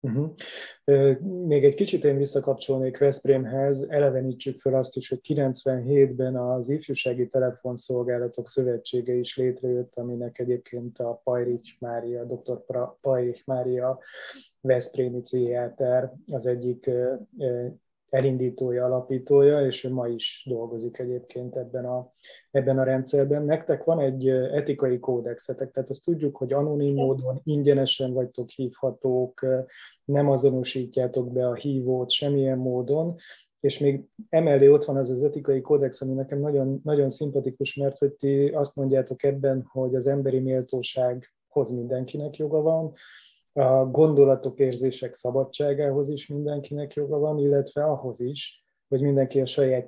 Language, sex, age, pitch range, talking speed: Hungarian, male, 20-39, 125-140 Hz, 125 wpm